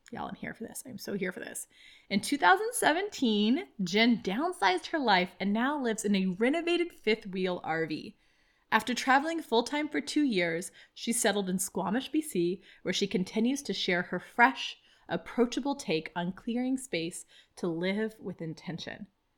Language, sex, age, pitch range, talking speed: English, female, 20-39, 195-280 Hz, 165 wpm